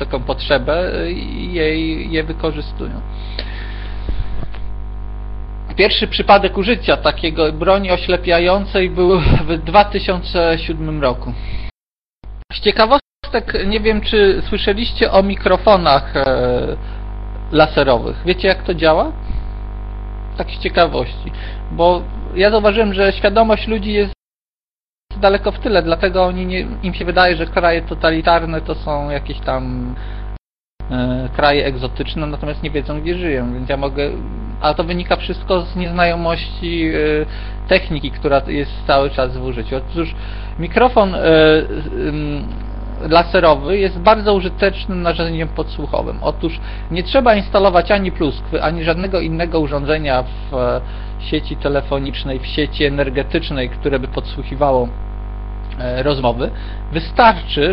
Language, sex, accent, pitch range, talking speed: Polish, male, native, 125-180 Hz, 115 wpm